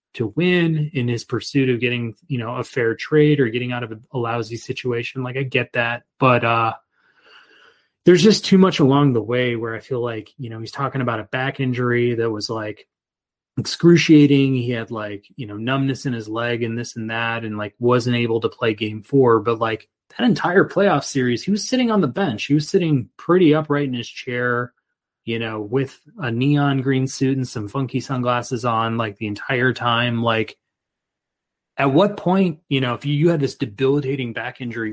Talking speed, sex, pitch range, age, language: 205 wpm, male, 115-140 Hz, 20-39, English